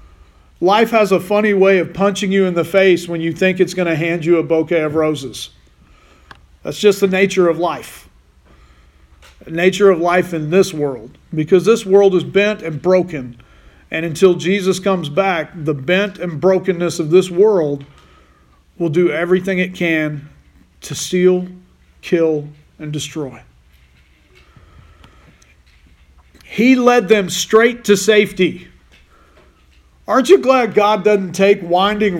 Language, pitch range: English, 155-205 Hz